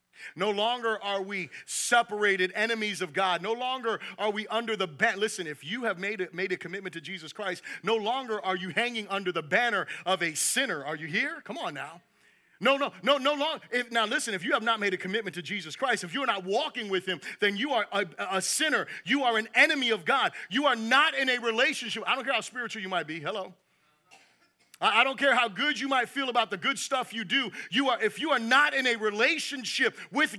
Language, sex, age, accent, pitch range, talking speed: English, male, 30-49, American, 210-285 Hz, 235 wpm